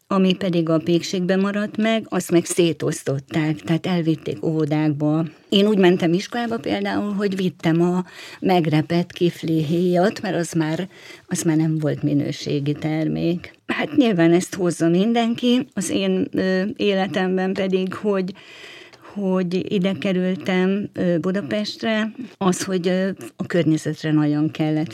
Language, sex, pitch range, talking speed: Hungarian, female, 155-185 Hz, 125 wpm